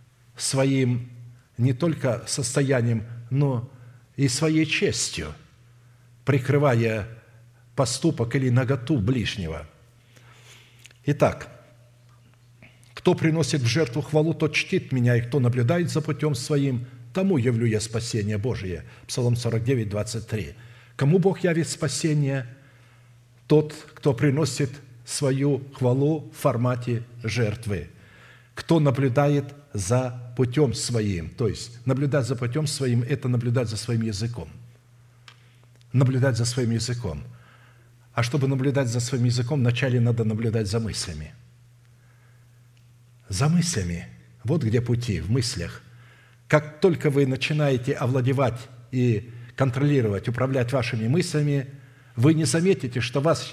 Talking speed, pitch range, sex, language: 110 wpm, 120-140 Hz, male, Russian